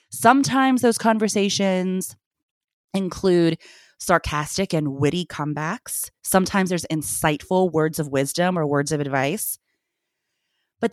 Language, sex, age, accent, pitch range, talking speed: English, female, 30-49, American, 155-235 Hz, 105 wpm